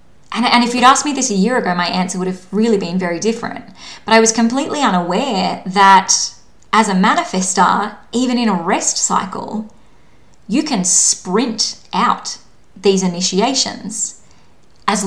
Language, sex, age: English, female, 20-39